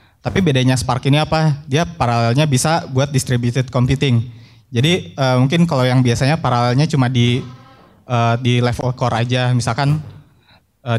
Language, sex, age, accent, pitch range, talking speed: Indonesian, male, 20-39, native, 120-140 Hz, 145 wpm